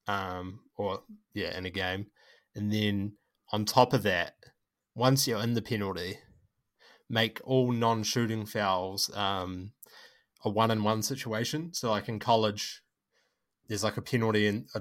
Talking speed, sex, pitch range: 140 wpm, male, 100-115 Hz